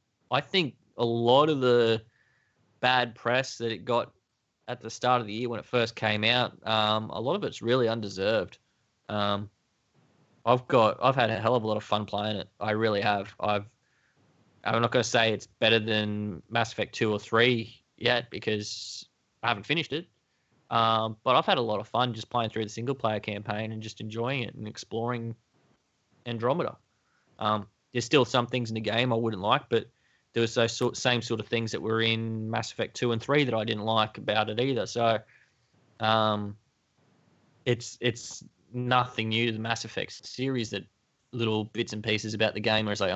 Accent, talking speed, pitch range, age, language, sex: Australian, 200 wpm, 105-125 Hz, 20-39, English, male